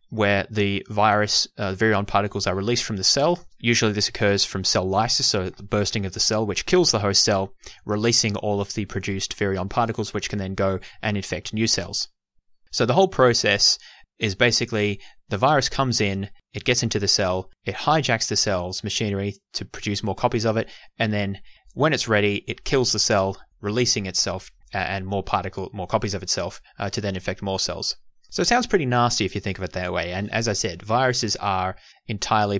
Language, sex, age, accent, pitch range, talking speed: English, male, 20-39, Australian, 95-115 Hz, 205 wpm